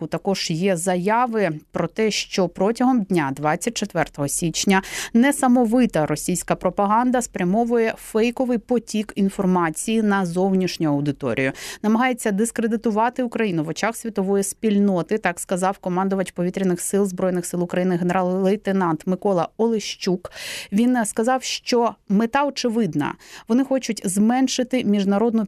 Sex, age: female, 30-49